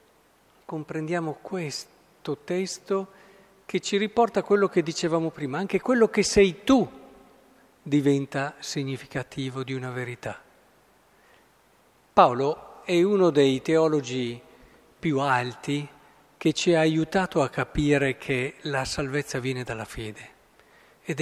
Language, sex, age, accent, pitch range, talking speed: Italian, male, 50-69, native, 135-195 Hz, 115 wpm